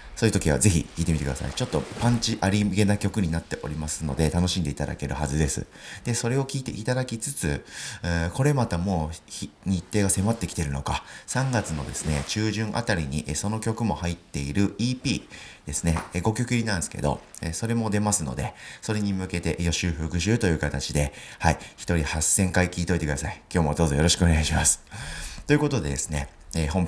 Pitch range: 75-110 Hz